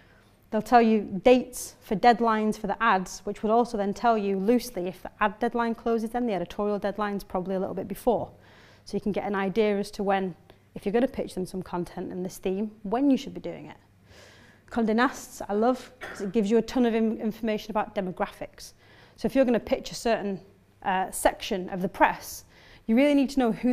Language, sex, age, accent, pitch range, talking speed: English, female, 30-49, British, 195-230 Hz, 220 wpm